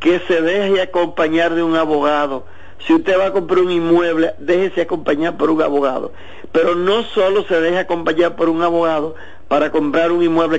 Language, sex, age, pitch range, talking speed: Spanish, male, 50-69, 150-190 Hz, 180 wpm